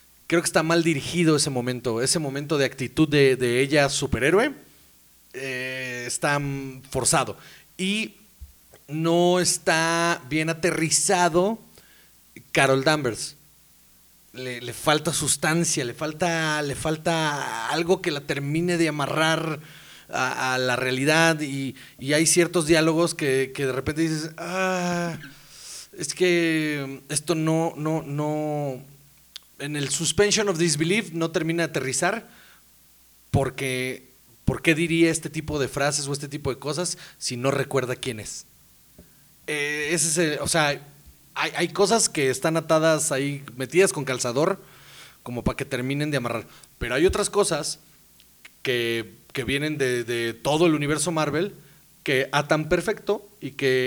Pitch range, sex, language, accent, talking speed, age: 130-165 Hz, male, Spanish, Mexican, 140 wpm, 30-49